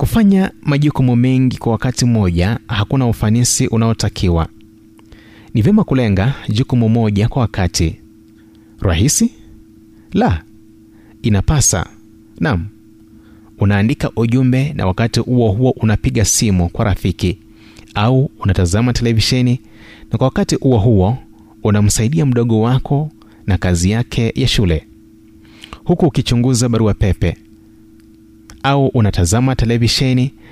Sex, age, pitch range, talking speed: male, 30-49, 105-125 Hz, 105 wpm